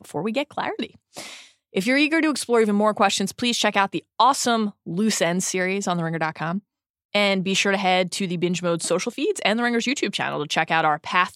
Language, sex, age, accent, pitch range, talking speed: English, female, 20-39, American, 175-250 Hz, 225 wpm